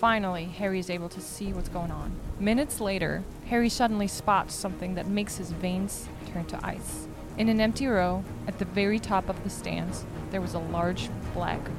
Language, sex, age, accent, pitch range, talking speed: English, female, 20-39, American, 185-225 Hz, 195 wpm